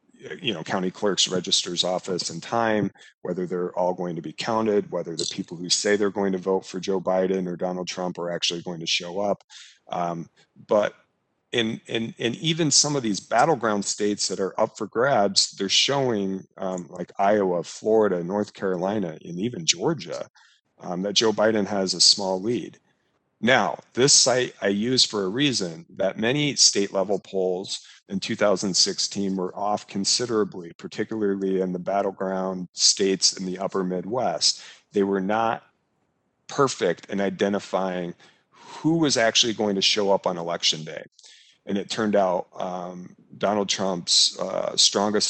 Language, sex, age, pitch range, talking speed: English, male, 40-59, 90-105 Hz, 165 wpm